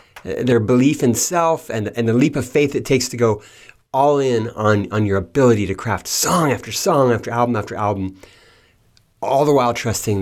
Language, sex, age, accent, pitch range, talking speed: English, male, 30-49, American, 95-125 Hz, 195 wpm